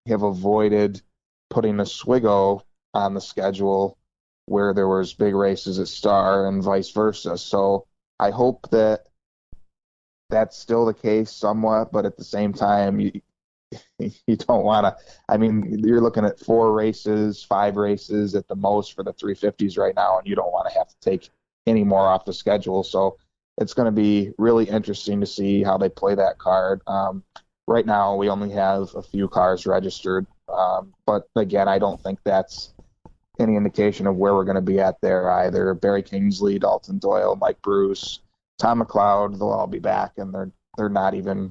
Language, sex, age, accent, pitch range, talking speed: English, male, 20-39, American, 95-105 Hz, 185 wpm